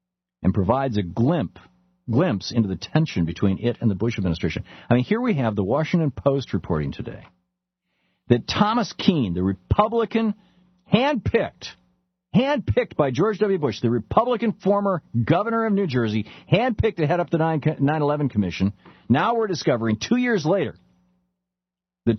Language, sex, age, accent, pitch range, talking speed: English, male, 50-69, American, 110-175 Hz, 155 wpm